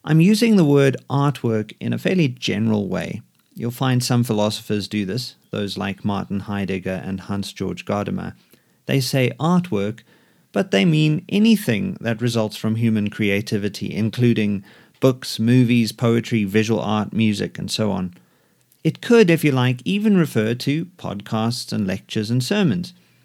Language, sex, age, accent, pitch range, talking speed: English, male, 40-59, British, 105-150 Hz, 150 wpm